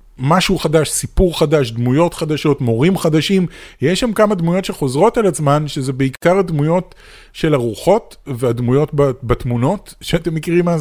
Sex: male